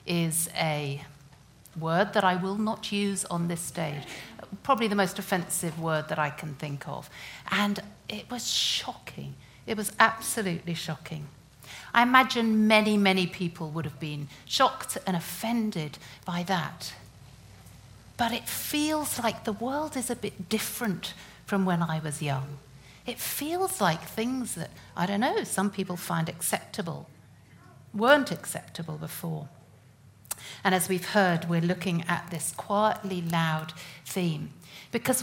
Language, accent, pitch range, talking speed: English, British, 160-215 Hz, 145 wpm